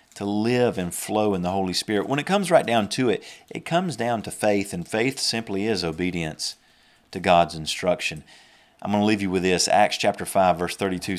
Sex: male